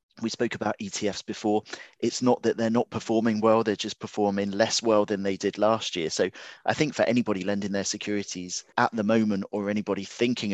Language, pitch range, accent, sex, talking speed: English, 95-110 Hz, British, male, 205 wpm